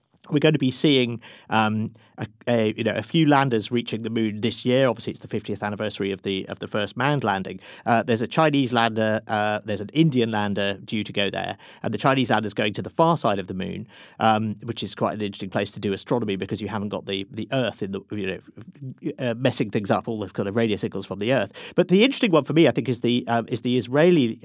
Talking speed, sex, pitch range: 260 wpm, male, 105-130 Hz